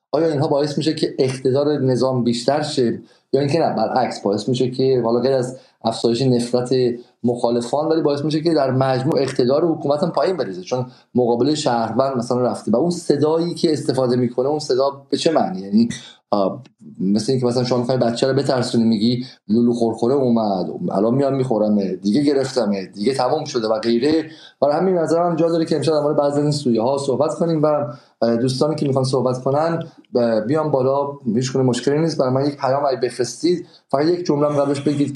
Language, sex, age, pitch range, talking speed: Persian, male, 30-49, 120-145 Hz, 185 wpm